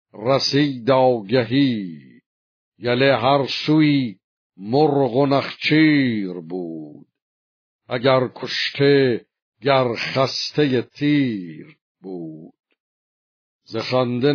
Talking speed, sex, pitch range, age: 65 wpm, male, 120-145 Hz, 50-69